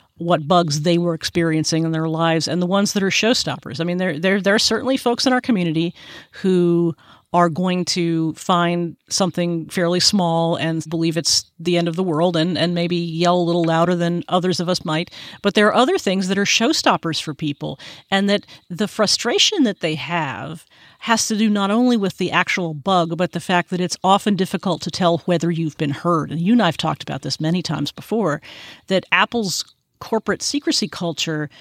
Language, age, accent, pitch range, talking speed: English, 40-59, American, 165-195 Hz, 205 wpm